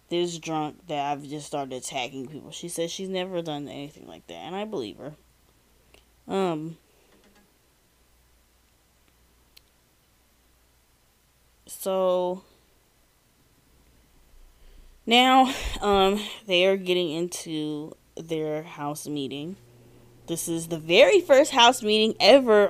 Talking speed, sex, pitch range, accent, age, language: 105 wpm, female, 125-195 Hz, American, 20-39, English